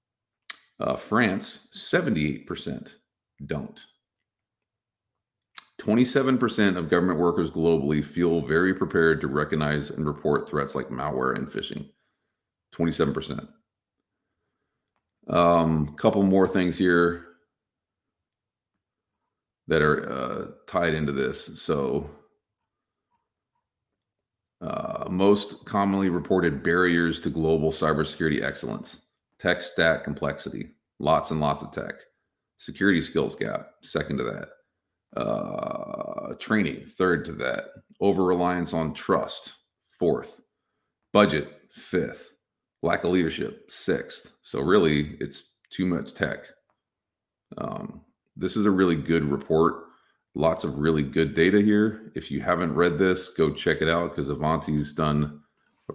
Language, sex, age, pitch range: English, male, 40-59, 75-95 Hz